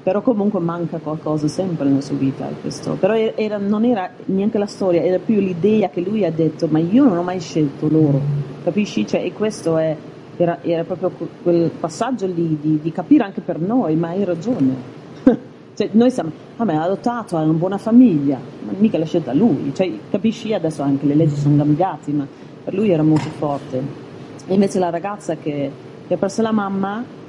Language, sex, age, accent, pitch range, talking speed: Italian, female, 40-59, native, 150-185 Hz, 195 wpm